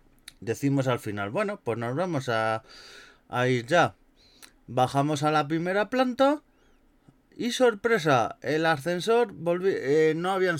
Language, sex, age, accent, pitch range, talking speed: Spanish, male, 30-49, Spanish, 125-160 Hz, 135 wpm